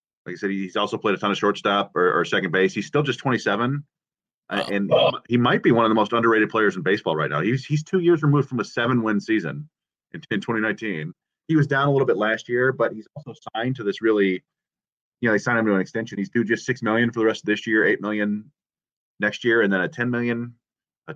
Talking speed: 255 wpm